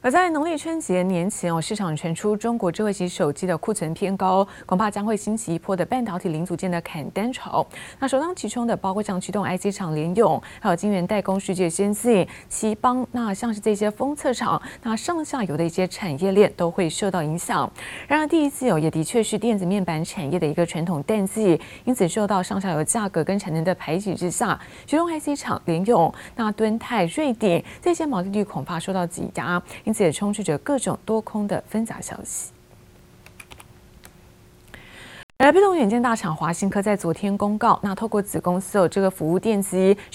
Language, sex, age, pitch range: Chinese, female, 20-39, 175-225 Hz